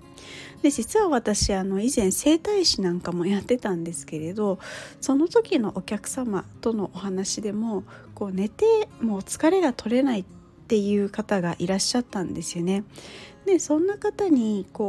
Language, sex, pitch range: Japanese, female, 185-260 Hz